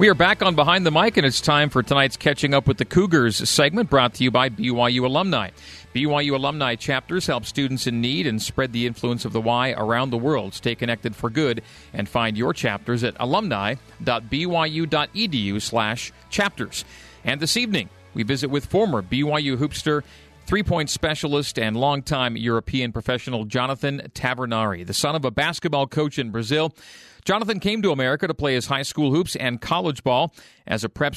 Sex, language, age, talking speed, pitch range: male, English, 40-59, 180 wpm, 120-155 Hz